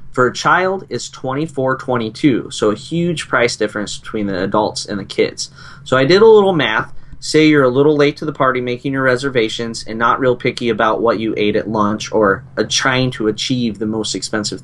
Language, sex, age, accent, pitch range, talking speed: English, male, 20-39, American, 110-130 Hz, 215 wpm